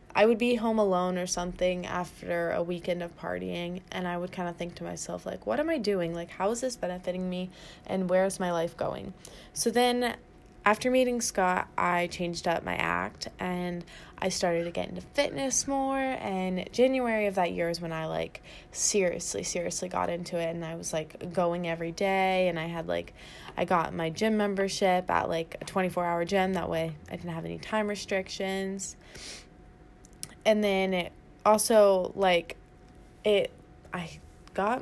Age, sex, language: 20-39, female, English